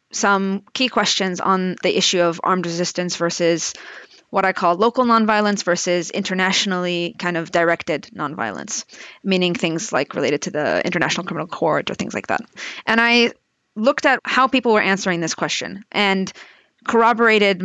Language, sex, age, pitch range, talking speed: English, female, 20-39, 180-220 Hz, 155 wpm